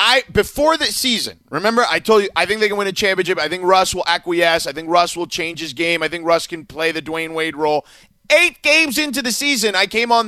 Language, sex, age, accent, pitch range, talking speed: English, male, 30-49, American, 165-220 Hz, 255 wpm